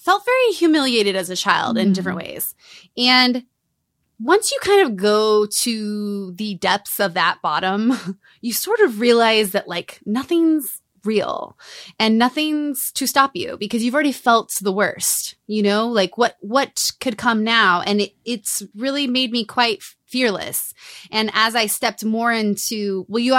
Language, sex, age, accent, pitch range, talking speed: English, female, 20-39, American, 185-230 Hz, 165 wpm